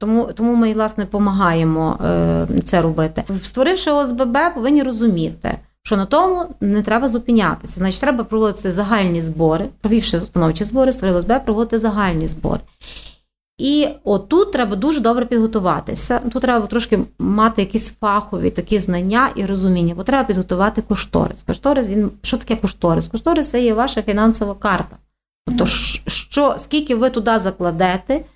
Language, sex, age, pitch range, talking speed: Ukrainian, female, 30-49, 190-255 Hz, 145 wpm